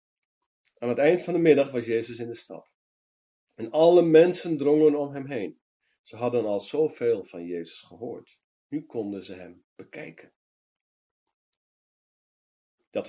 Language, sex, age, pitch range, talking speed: Dutch, male, 40-59, 115-170 Hz, 140 wpm